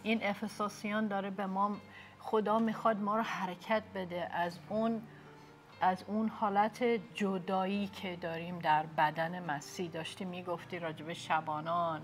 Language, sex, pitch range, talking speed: Persian, female, 175-225 Hz, 130 wpm